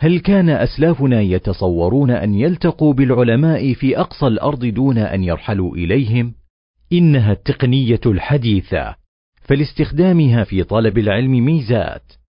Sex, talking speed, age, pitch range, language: male, 105 wpm, 40-59, 100-145 Hz, Arabic